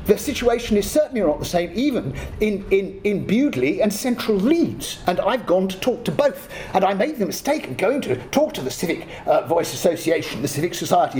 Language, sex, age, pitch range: English, male, 50-69, 155-250 Hz